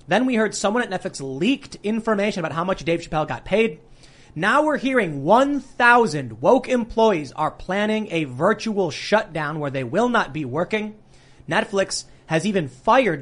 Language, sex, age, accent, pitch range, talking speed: English, male, 30-49, American, 145-200 Hz, 165 wpm